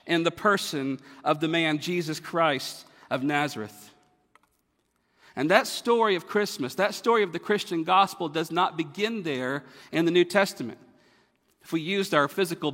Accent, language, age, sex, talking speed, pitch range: American, English, 50-69, male, 160 wpm, 150-185 Hz